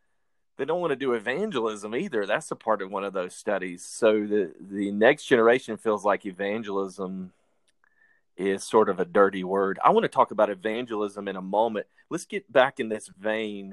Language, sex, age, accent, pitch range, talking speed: English, male, 30-49, American, 105-130 Hz, 190 wpm